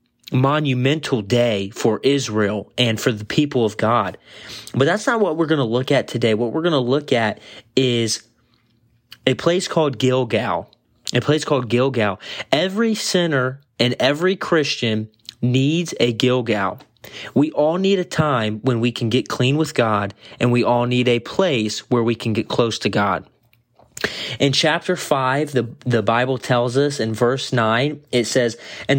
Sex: male